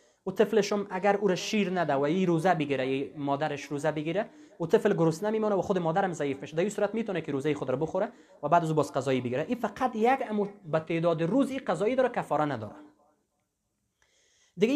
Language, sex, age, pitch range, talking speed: English, male, 30-49, 140-200 Hz, 205 wpm